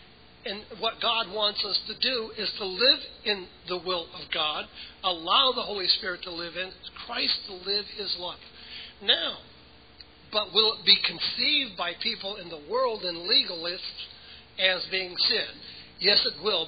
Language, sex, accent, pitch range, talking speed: English, male, American, 150-200 Hz, 165 wpm